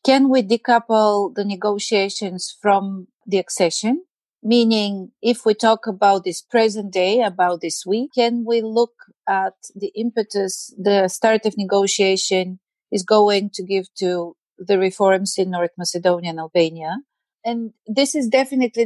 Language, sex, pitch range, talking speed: English, female, 195-240 Hz, 145 wpm